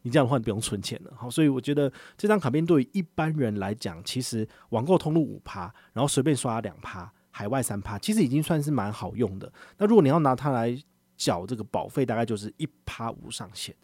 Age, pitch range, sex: 30-49, 105-145 Hz, male